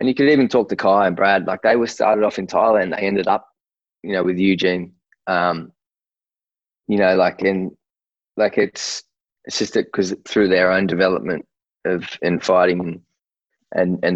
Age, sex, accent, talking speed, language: 20-39, male, Australian, 180 wpm, English